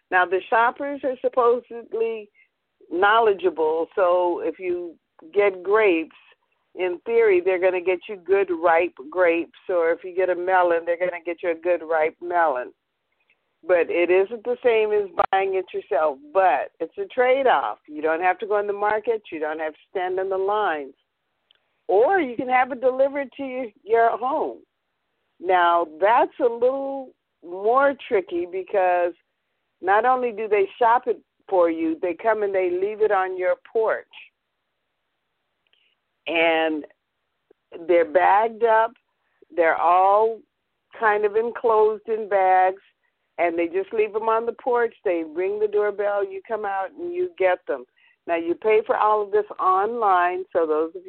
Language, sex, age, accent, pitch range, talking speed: English, female, 50-69, American, 180-265 Hz, 165 wpm